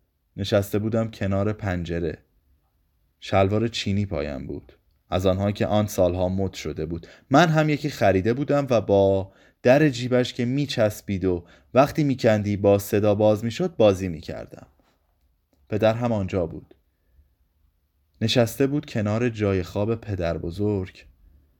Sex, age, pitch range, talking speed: male, 20-39, 85-120 Hz, 130 wpm